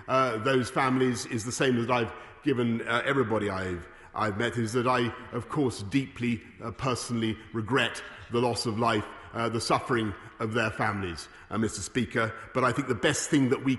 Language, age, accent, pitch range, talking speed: English, 40-59, British, 115-140 Hz, 190 wpm